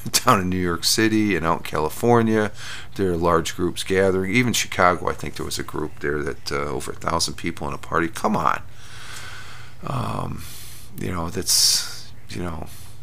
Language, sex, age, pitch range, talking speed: English, male, 40-59, 90-110 Hz, 185 wpm